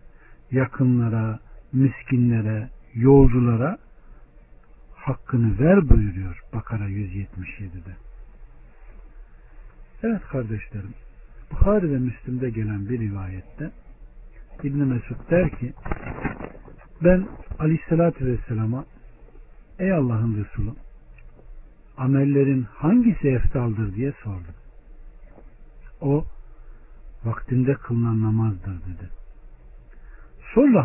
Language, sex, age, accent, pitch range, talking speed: Turkish, male, 60-79, native, 100-140 Hz, 70 wpm